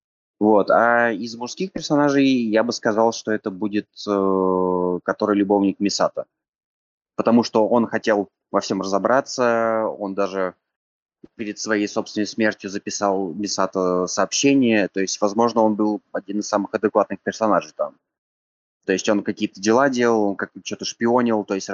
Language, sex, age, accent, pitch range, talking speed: Russian, male, 20-39, native, 95-115 Hz, 145 wpm